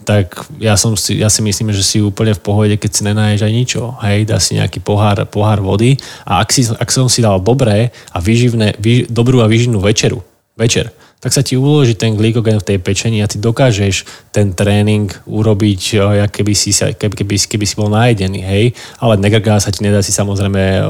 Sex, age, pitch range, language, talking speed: male, 20-39, 100-115 Hz, Slovak, 205 wpm